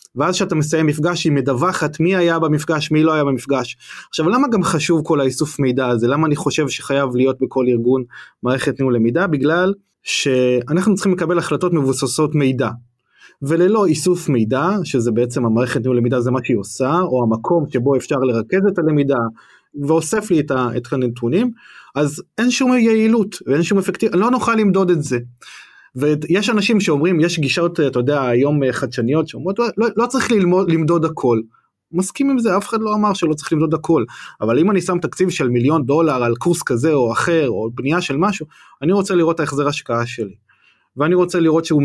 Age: 30-49